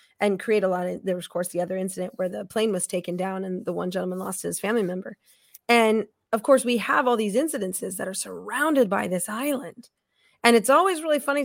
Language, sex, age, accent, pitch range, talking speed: English, female, 30-49, American, 190-255 Hz, 235 wpm